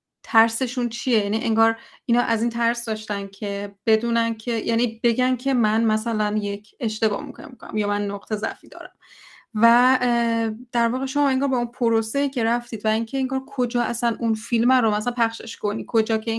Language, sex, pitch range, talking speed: Persian, female, 215-245 Hz, 180 wpm